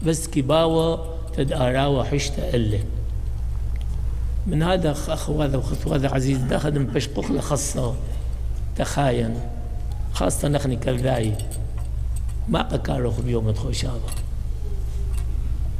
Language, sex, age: English, male, 60-79